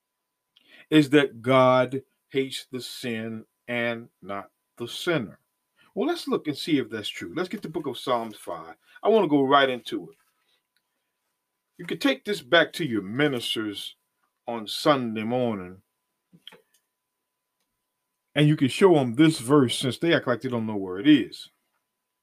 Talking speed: 160 wpm